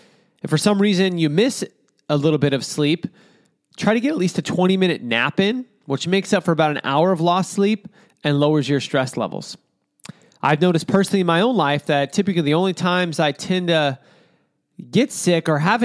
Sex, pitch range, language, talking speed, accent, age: male, 145-185 Hz, English, 205 wpm, American, 30-49